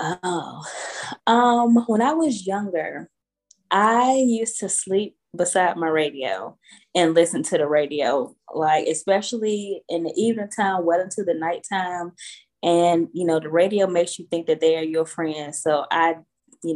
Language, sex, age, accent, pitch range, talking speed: English, female, 10-29, American, 160-195 Hz, 160 wpm